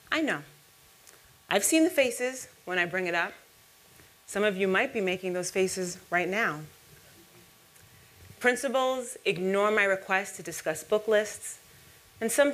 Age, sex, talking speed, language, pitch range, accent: 30-49, female, 150 wpm, English, 175-225 Hz, American